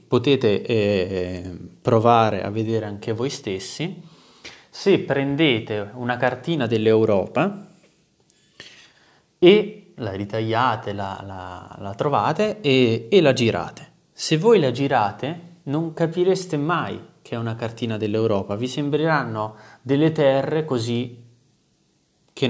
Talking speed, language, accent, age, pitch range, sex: 110 wpm, Italian, native, 20-39, 105-145 Hz, male